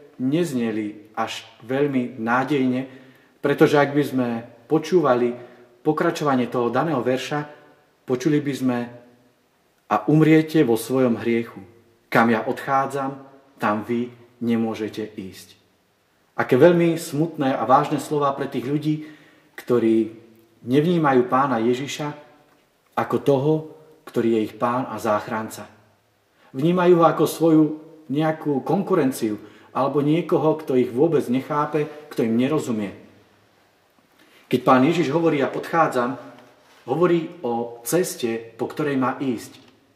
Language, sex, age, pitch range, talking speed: Slovak, male, 40-59, 120-155 Hz, 115 wpm